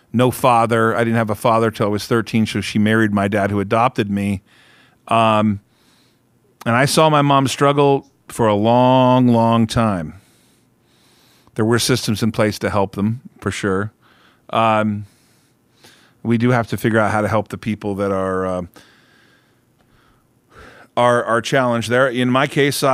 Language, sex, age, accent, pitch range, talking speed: English, male, 40-59, American, 105-125 Hz, 165 wpm